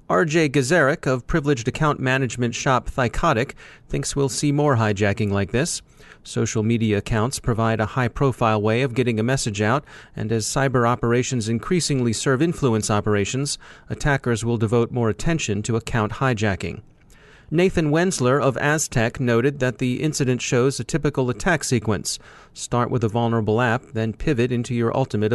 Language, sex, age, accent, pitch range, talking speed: English, male, 30-49, American, 110-140 Hz, 155 wpm